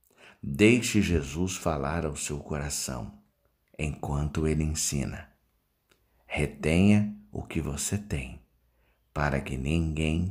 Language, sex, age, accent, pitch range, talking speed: Portuguese, male, 50-69, Brazilian, 70-85 Hz, 100 wpm